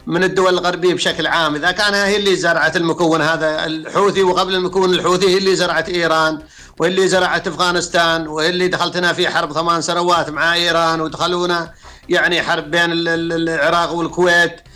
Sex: male